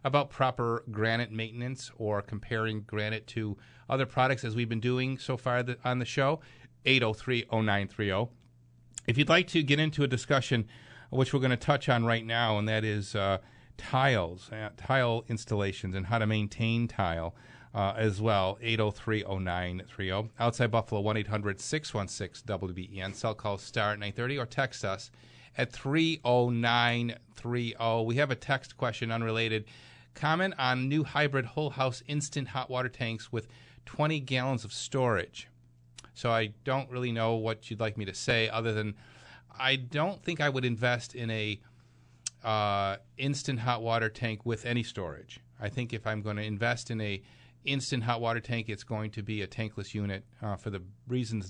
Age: 40-59